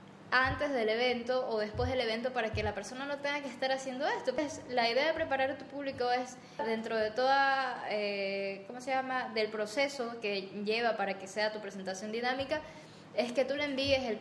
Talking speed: 205 wpm